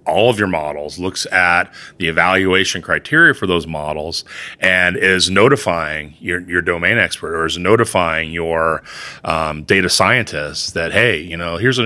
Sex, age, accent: male, 30-49, American